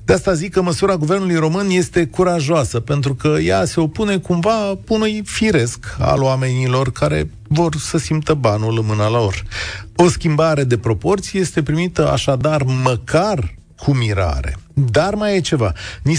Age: 40-59